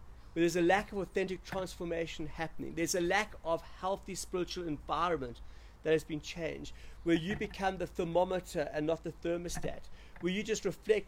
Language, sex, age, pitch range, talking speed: English, male, 50-69, 160-205 Hz, 175 wpm